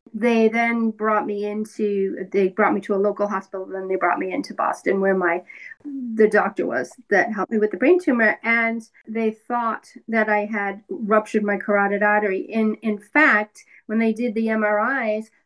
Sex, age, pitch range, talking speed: female, 40-59, 210-245 Hz, 185 wpm